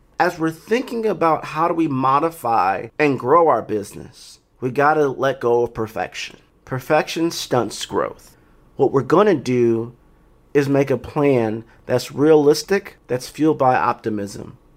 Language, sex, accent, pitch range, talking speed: English, male, American, 130-180 Hz, 140 wpm